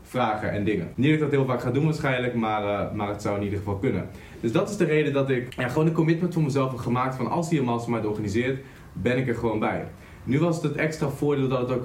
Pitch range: 115-140 Hz